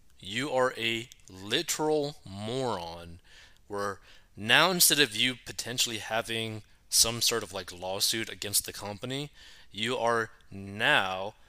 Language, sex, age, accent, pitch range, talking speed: English, male, 20-39, American, 100-130 Hz, 120 wpm